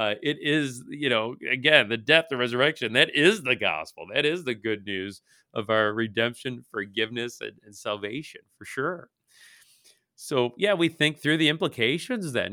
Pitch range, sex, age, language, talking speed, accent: 110-150 Hz, male, 40-59, English, 170 wpm, American